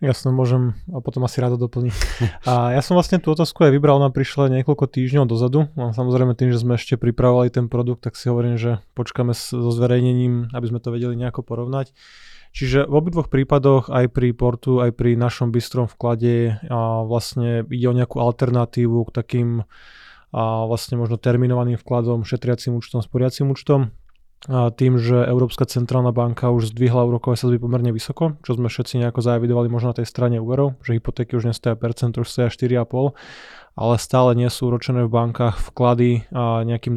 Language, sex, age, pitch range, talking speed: Slovak, male, 20-39, 120-125 Hz, 180 wpm